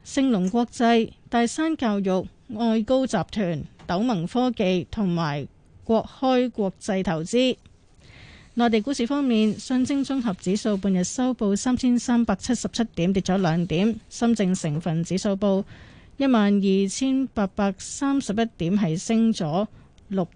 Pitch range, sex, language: 185-240 Hz, female, Chinese